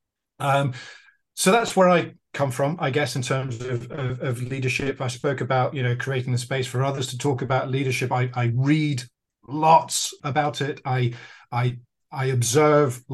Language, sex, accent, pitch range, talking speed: English, male, British, 125-150 Hz, 180 wpm